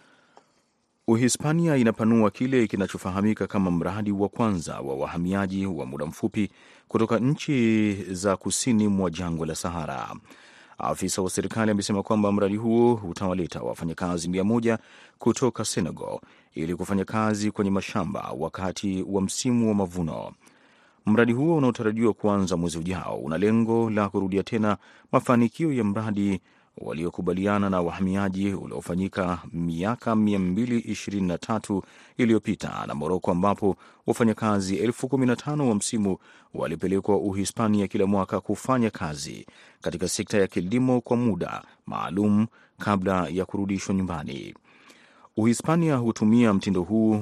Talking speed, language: 115 wpm, Swahili